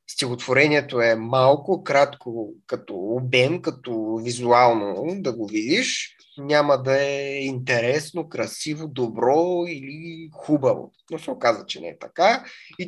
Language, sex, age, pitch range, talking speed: Bulgarian, male, 30-49, 120-165 Hz, 125 wpm